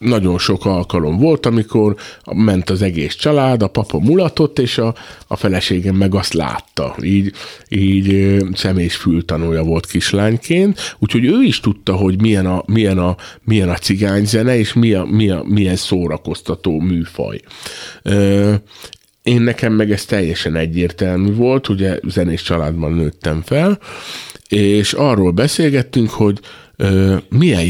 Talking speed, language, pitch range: 125 wpm, Hungarian, 90-115 Hz